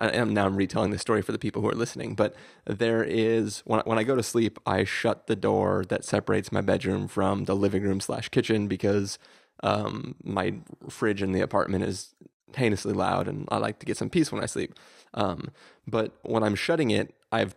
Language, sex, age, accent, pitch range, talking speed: English, male, 30-49, American, 100-115 Hz, 210 wpm